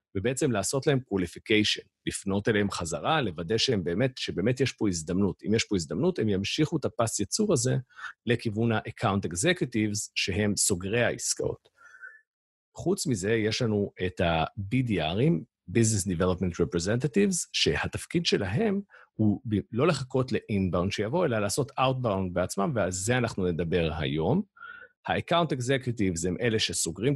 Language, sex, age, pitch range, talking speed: Hebrew, male, 50-69, 95-135 Hz, 135 wpm